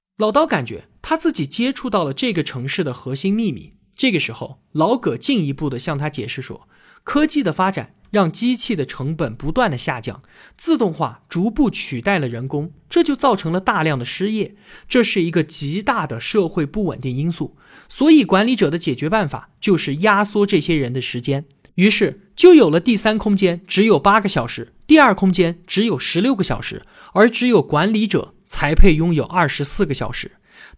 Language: Chinese